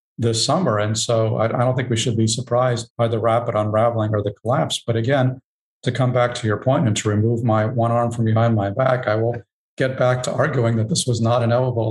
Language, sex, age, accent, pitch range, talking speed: English, male, 50-69, American, 110-125 Hz, 235 wpm